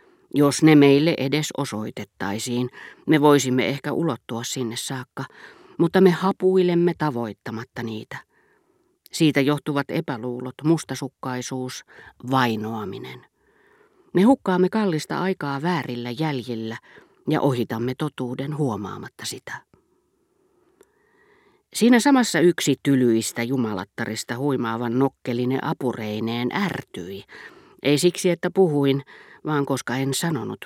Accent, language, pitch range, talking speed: native, Finnish, 125-175 Hz, 95 wpm